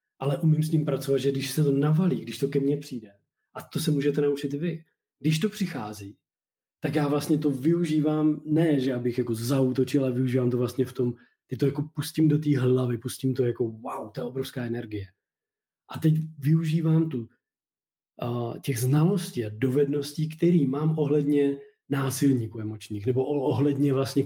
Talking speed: 180 wpm